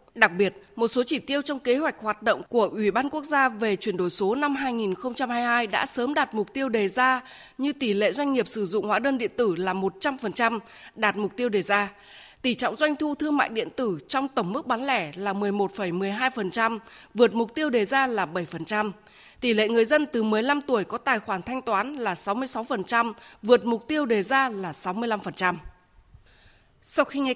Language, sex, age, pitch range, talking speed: Vietnamese, female, 20-39, 205-270 Hz, 205 wpm